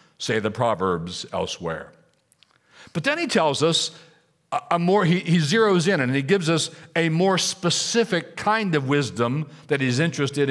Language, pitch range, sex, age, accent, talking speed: English, 115-165 Hz, male, 60-79, American, 160 wpm